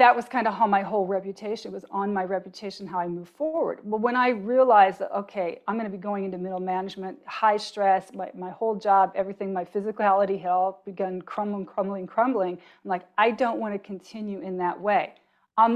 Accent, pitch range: American, 185-225 Hz